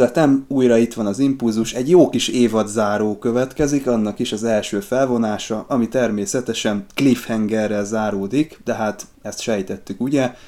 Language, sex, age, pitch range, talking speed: Hungarian, male, 20-39, 100-120 Hz, 150 wpm